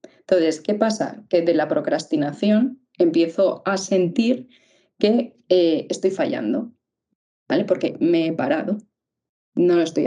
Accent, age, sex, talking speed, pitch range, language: Spanish, 20-39, female, 130 wpm, 180-250 Hz, Spanish